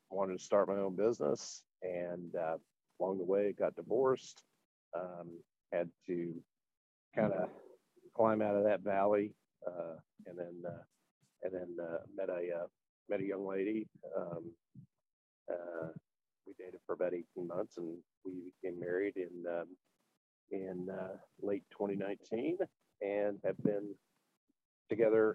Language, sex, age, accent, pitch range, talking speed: English, male, 50-69, American, 90-105 Hz, 140 wpm